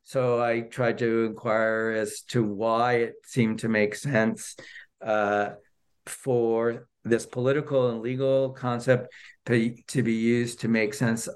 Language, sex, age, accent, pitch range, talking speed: English, male, 50-69, American, 115-130 Hz, 145 wpm